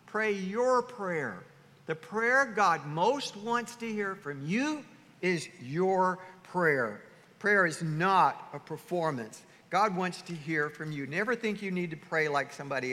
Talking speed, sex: 160 wpm, male